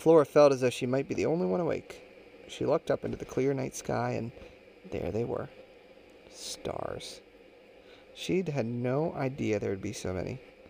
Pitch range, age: 125-175 Hz, 40-59